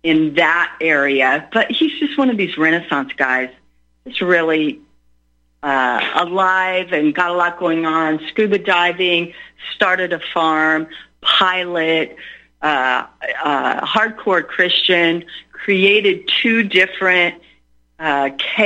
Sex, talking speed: female, 115 wpm